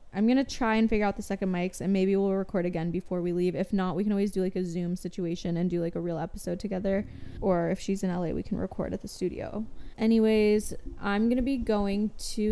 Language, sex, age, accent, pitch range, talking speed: English, female, 20-39, American, 180-215 Hz, 245 wpm